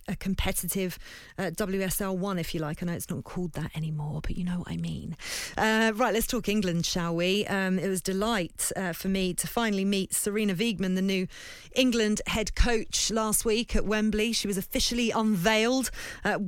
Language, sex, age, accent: English, female, 30-49, British